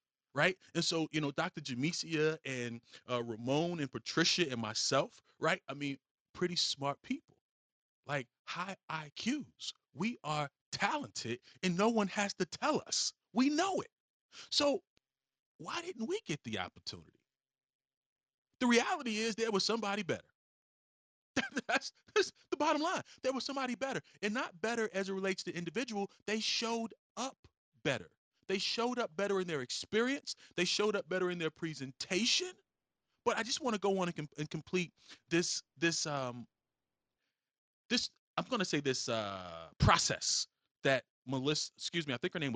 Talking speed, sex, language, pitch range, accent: 160 wpm, male, English, 130-210 Hz, American